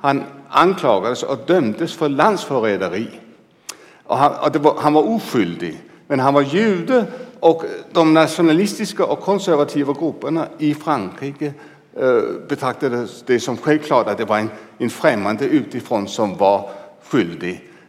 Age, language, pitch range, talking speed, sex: 60-79, Swedish, 140-175 Hz, 140 wpm, male